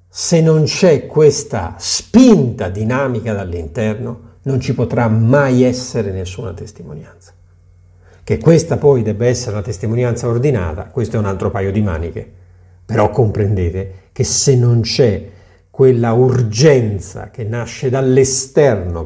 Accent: native